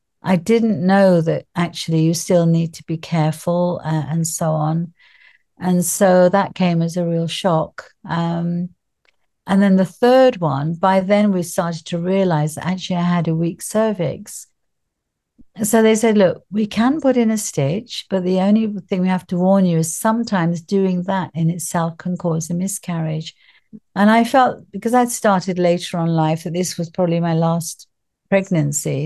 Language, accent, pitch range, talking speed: English, British, 165-200 Hz, 180 wpm